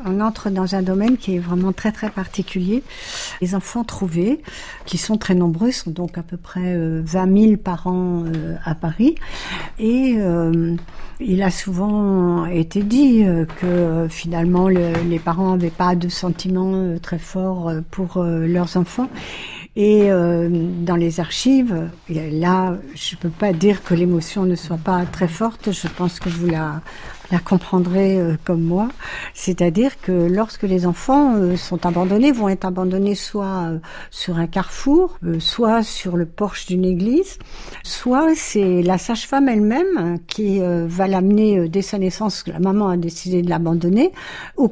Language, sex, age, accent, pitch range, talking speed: French, female, 60-79, French, 175-205 Hz, 155 wpm